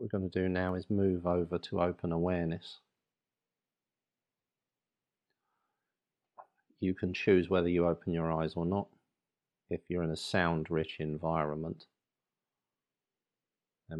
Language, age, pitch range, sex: English, 50-69, 80-95 Hz, male